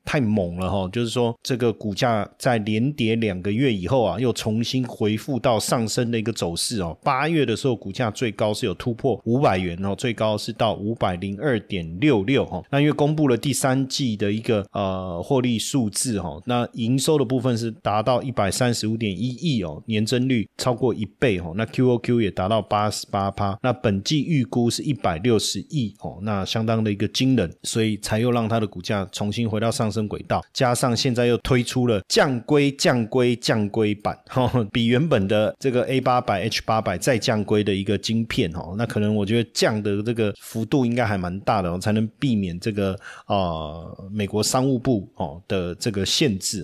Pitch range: 100-125 Hz